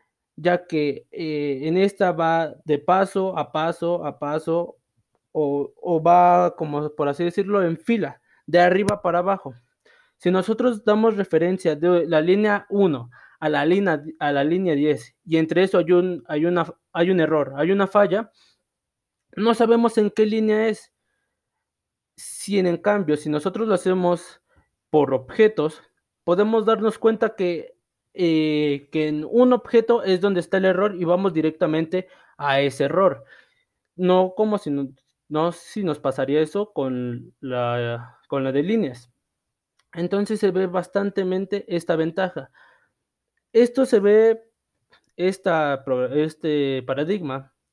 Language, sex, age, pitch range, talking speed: Spanish, male, 20-39, 150-200 Hz, 145 wpm